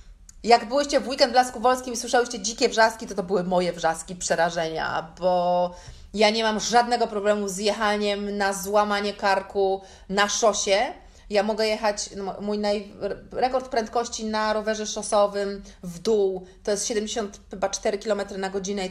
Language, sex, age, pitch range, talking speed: Polish, female, 30-49, 180-230 Hz, 150 wpm